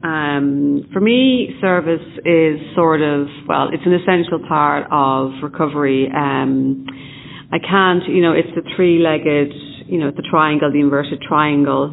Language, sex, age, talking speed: English, female, 40-59, 145 wpm